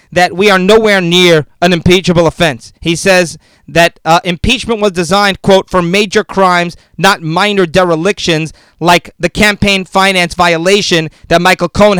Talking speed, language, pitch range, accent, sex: 150 wpm, English, 185-220 Hz, American, male